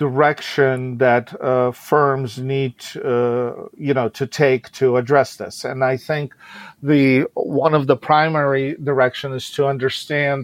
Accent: American